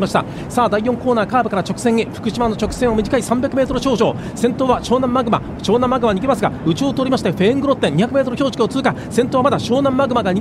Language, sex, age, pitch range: Japanese, male, 40-59, 220-290 Hz